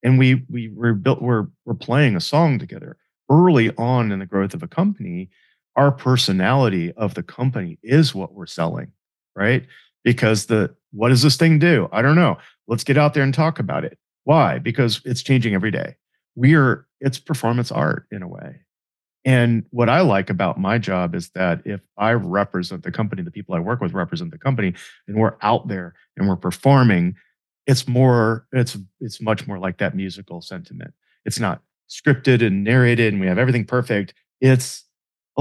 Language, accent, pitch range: English, American, 100-135 Hz